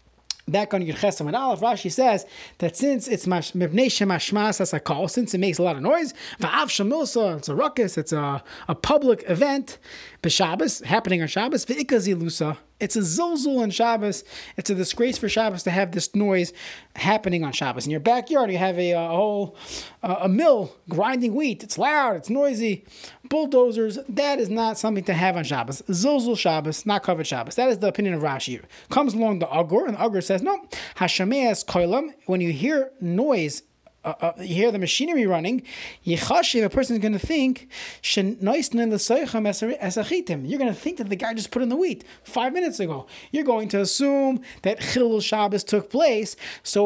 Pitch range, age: 185-250 Hz, 30-49